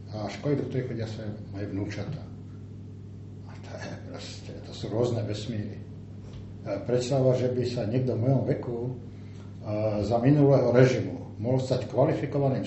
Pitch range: 105-135 Hz